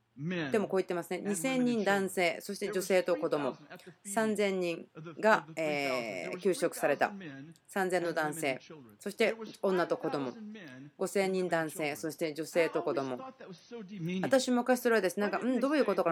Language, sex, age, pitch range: Japanese, female, 30-49, 180-260 Hz